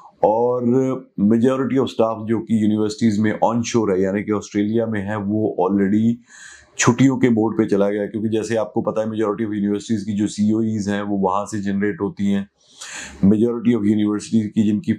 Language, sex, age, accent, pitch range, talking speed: Hindi, male, 30-49, native, 105-115 Hz, 190 wpm